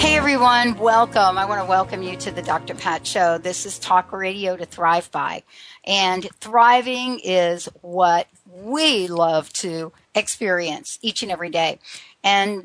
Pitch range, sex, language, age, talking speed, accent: 185-230 Hz, female, English, 60-79, 155 wpm, American